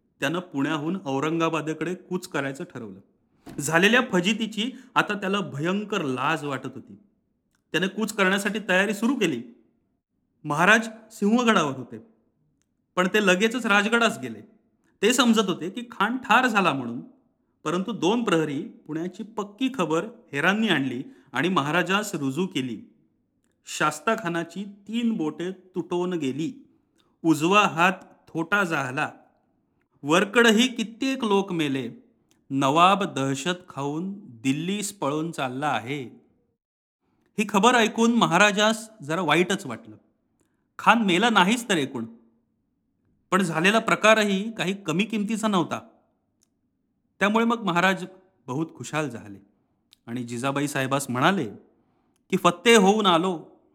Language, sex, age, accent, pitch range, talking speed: Marathi, male, 40-59, native, 155-215 Hz, 115 wpm